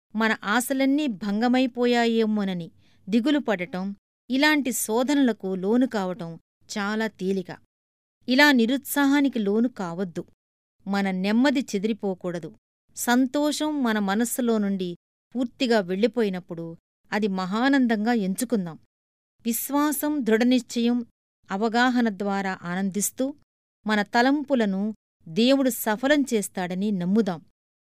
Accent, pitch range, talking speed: native, 195-255 Hz, 80 wpm